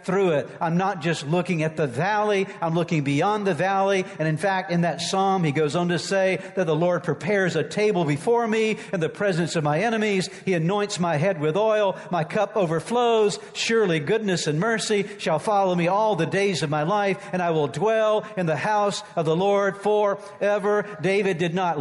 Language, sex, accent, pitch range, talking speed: English, male, American, 165-210 Hz, 205 wpm